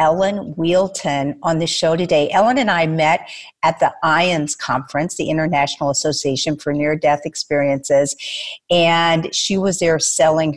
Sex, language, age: female, English, 50-69